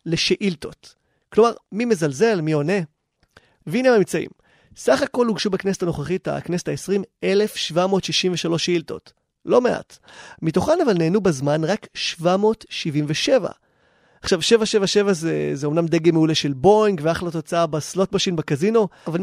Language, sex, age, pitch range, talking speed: Hebrew, male, 30-49, 160-205 Hz, 125 wpm